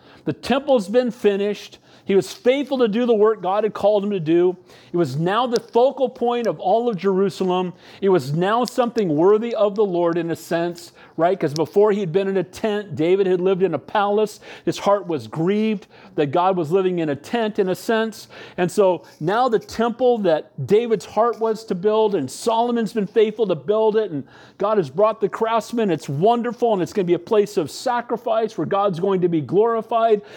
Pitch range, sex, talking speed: 180-220 Hz, male, 215 wpm